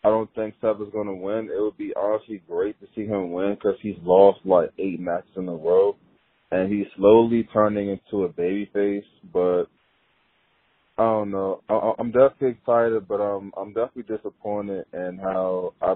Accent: American